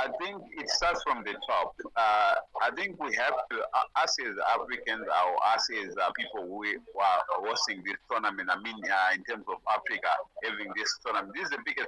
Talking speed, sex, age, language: 205 wpm, male, 50-69, English